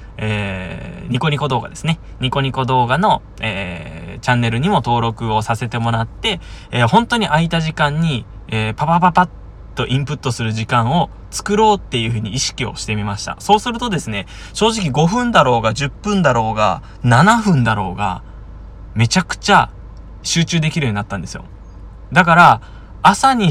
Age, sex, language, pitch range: 20-39, male, Japanese, 100-150 Hz